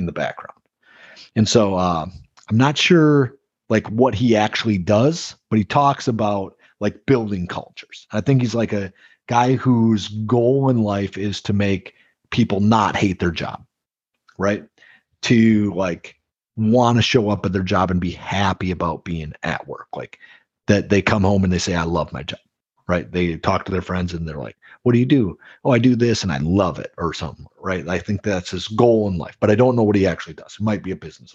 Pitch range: 95-120 Hz